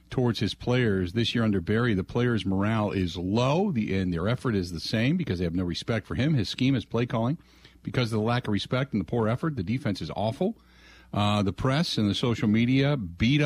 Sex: male